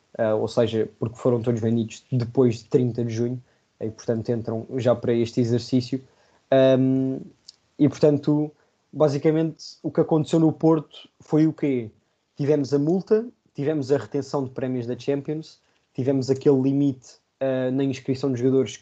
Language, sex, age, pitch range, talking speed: Portuguese, male, 20-39, 120-140 Hz, 145 wpm